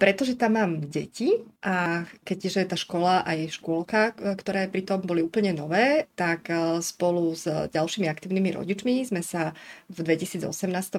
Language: Slovak